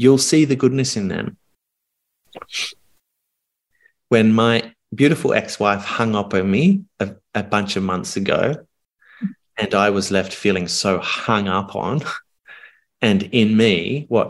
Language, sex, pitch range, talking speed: English, male, 100-130 Hz, 140 wpm